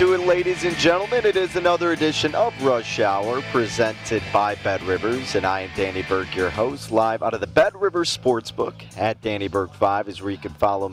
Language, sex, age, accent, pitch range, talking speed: English, male, 30-49, American, 105-140 Hz, 205 wpm